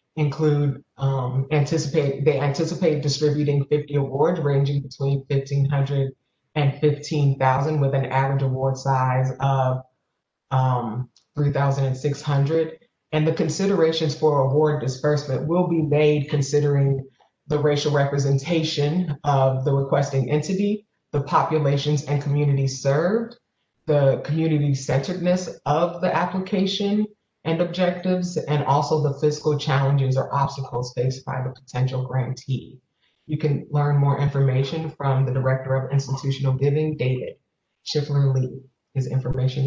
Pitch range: 135-150 Hz